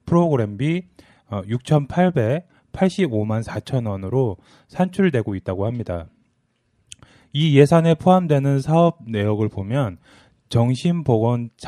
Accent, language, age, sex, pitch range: native, Korean, 20-39, male, 110-145 Hz